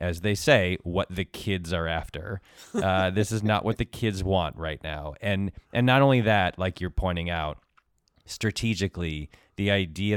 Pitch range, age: 85-100 Hz, 20-39